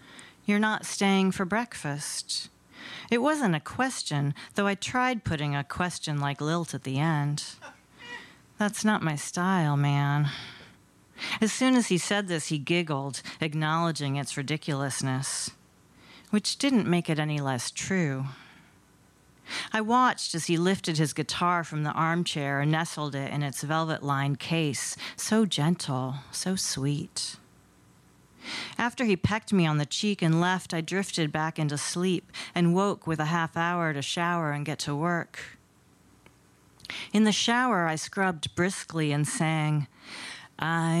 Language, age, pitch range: English, 40-59, 150-200 Hz